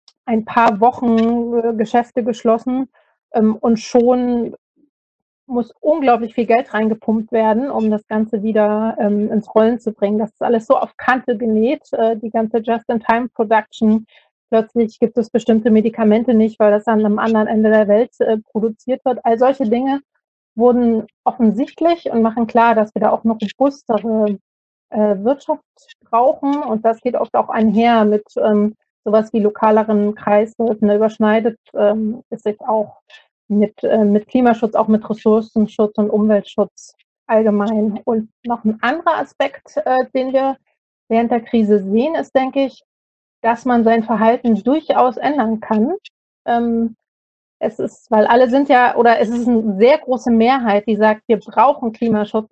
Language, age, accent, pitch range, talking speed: German, 30-49, German, 215-245 Hz, 155 wpm